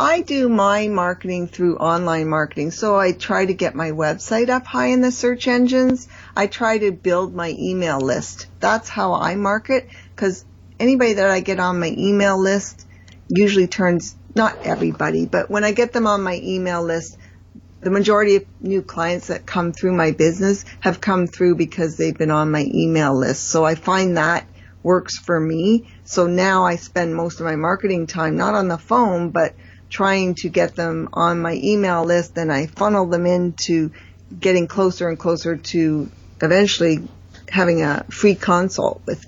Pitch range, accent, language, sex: 160-195 Hz, American, English, female